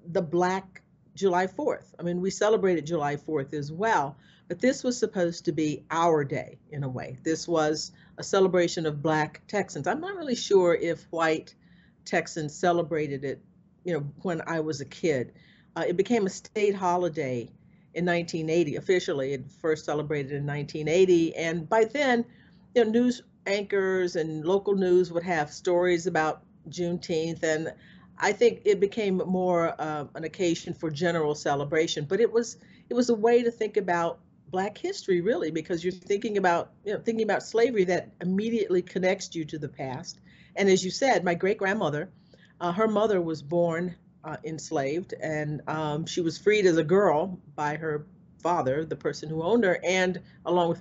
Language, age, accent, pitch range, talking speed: English, 50-69, American, 160-195 Hz, 175 wpm